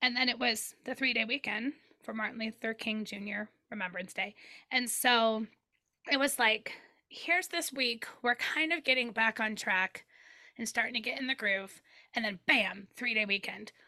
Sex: female